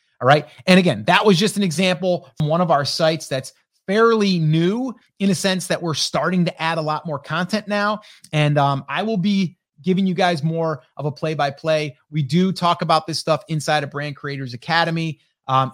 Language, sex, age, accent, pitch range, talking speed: English, male, 30-49, American, 135-185 Hz, 205 wpm